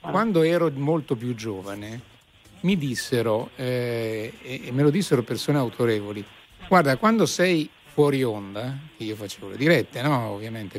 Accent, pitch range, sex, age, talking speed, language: native, 120-170 Hz, male, 60-79, 145 wpm, Italian